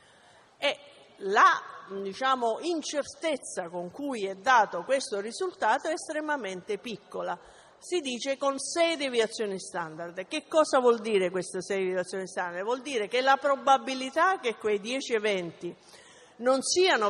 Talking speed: 130 wpm